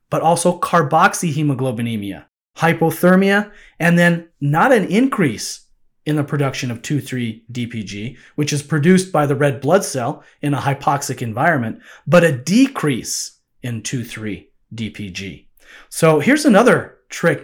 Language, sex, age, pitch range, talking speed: English, male, 30-49, 130-180 Hz, 120 wpm